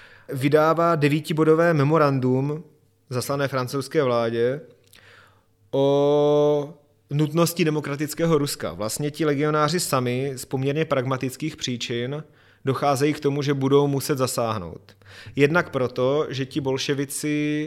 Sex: male